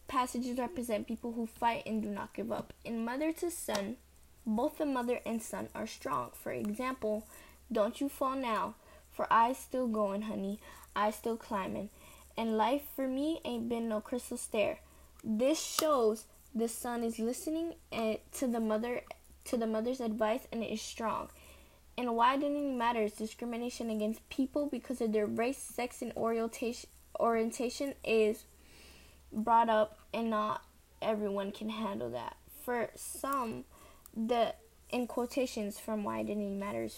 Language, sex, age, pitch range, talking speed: English, female, 10-29, 215-255 Hz, 155 wpm